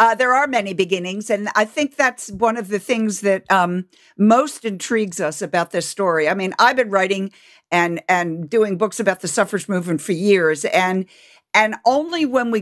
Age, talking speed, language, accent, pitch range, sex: 60-79, 195 wpm, English, American, 185-235 Hz, female